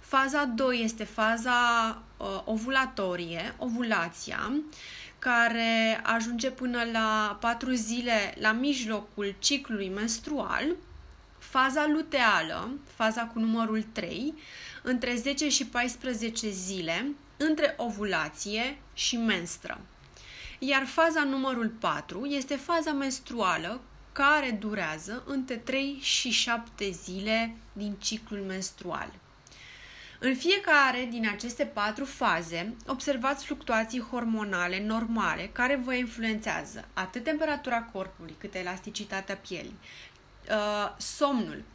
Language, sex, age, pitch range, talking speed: Romanian, female, 20-39, 210-265 Hz, 100 wpm